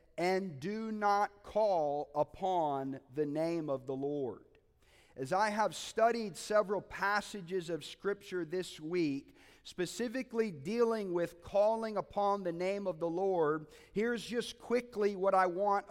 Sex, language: male, English